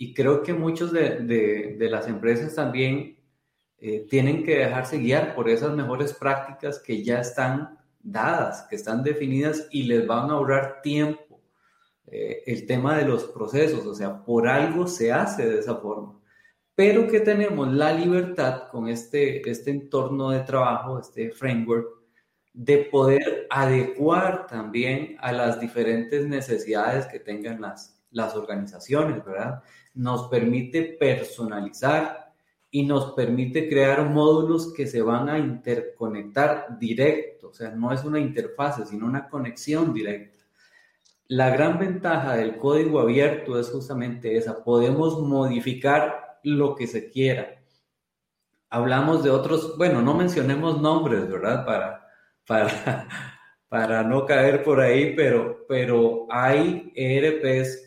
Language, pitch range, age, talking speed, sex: Spanish, 120-150 Hz, 30-49, 135 wpm, male